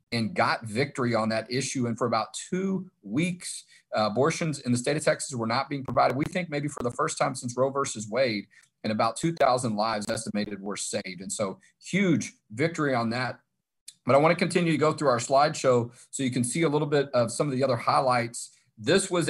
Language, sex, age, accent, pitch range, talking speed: English, male, 40-59, American, 120-150 Hz, 220 wpm